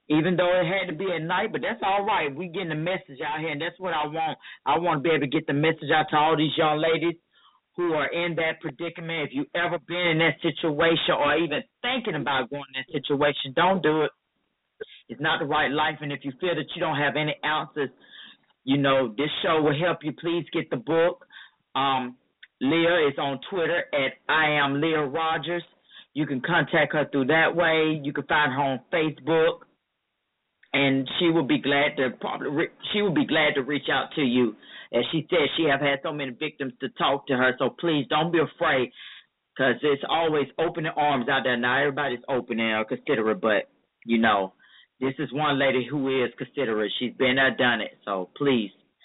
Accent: American